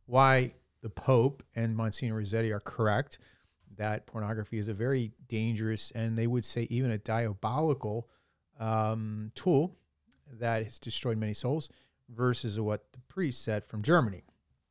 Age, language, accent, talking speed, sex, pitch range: 40-59, English, American, 145 wpm, male, 110-140 Hz